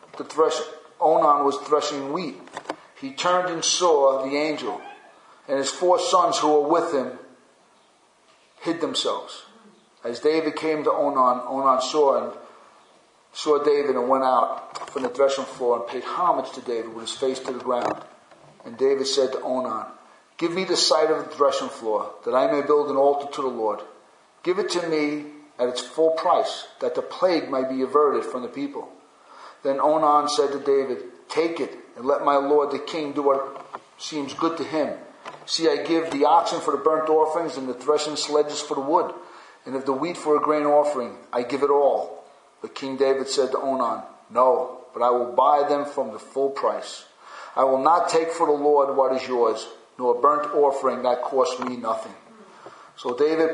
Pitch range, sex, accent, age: 135-160 Hz, male, American, 40-59